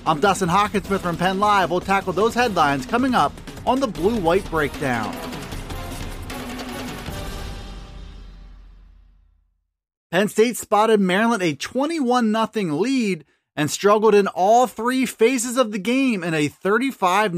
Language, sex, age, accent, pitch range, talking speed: English, male, 30-49, American, 175-240 Hz, 130 wpm